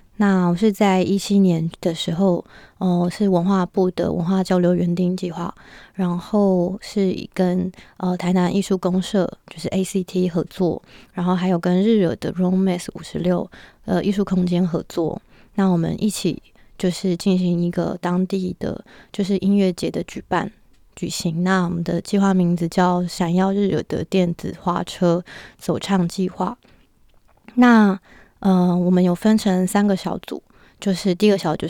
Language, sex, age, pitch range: Chinese, female, 20-39, 175-195 Hz